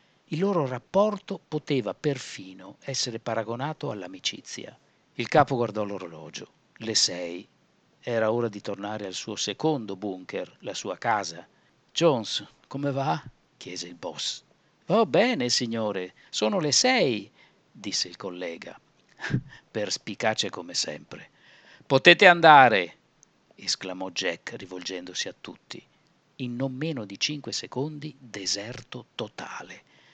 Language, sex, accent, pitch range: Italian, male, native, 105-150 Hz